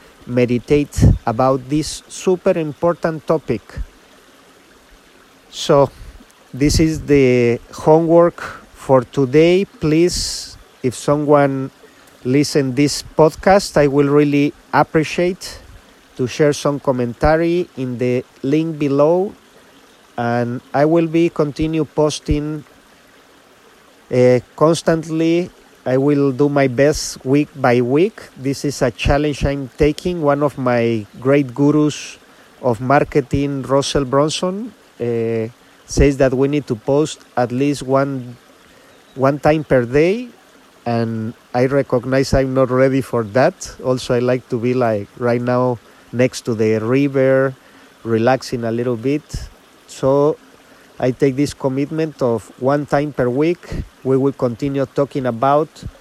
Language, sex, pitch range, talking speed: English, male, 125-150 Hz, 125 wpm